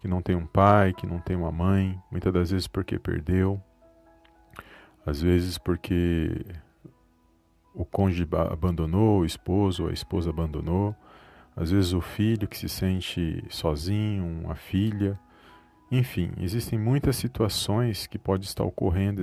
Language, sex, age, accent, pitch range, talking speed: Portuguese, male, 40-59, Brazilian, 90-110 Hz, 135 wpm